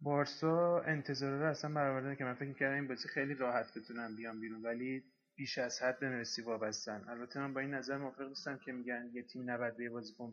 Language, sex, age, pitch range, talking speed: Persian, male, 20-39, 120-140 Hz, 205 wpm